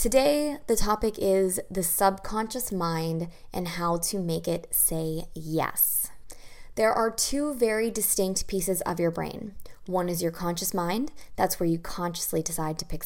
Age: 20-39